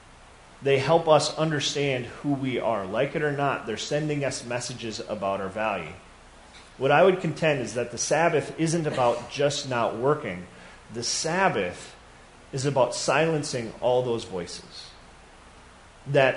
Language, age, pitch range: English, 40-59, 115-150 Hz